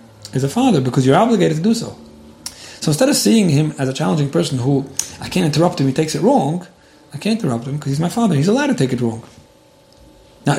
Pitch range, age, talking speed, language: 125-155 Hz, 40-59, 240 wpm, English